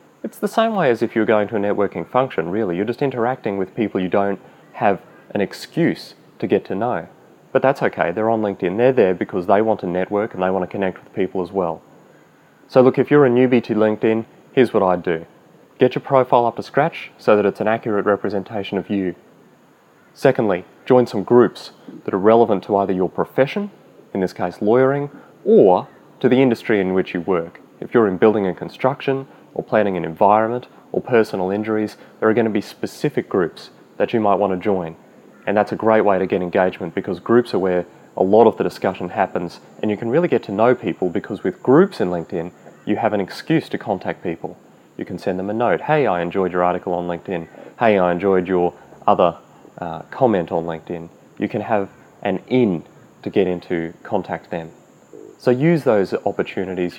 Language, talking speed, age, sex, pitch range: English, 210 wpm, 30-49, male, 90-120 Hz